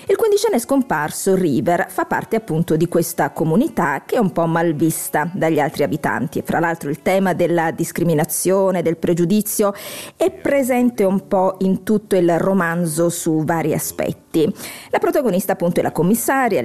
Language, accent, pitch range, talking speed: Italian, native, 165-230 Hz, 160 wpm